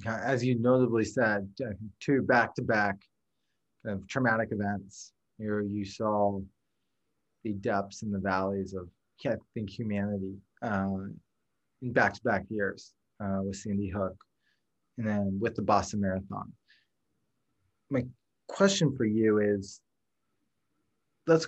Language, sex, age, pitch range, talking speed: English, male, 20-39, 100-125 Hz, 115 wpm